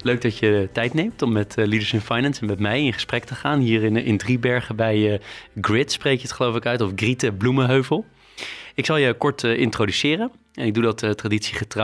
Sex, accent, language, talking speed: male, Dutch, Dutch, 235 wpm